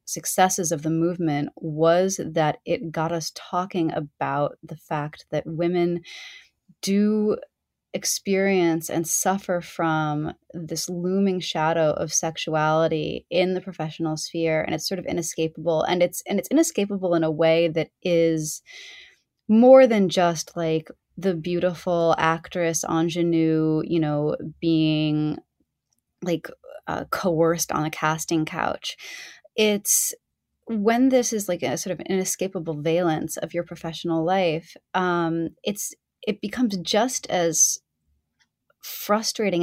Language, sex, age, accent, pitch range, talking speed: English, female, 20-39, American, 155-190 Hz, 125 wpm